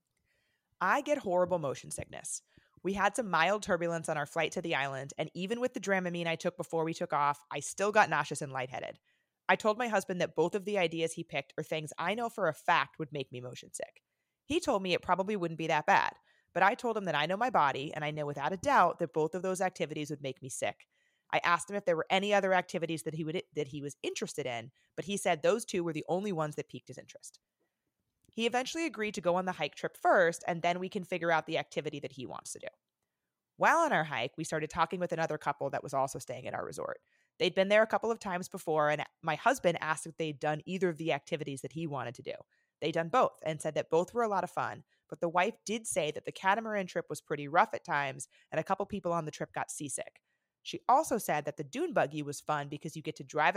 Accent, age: American, 30-49